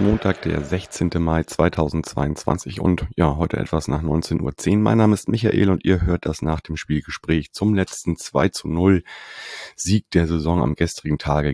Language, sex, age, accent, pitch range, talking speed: German, male, 30-49, German, 80-95 Hz, 160 wpm